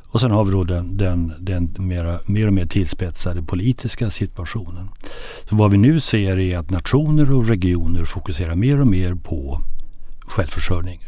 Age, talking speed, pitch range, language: 60-79, 160 wpm, 85-105 Hz, Swedish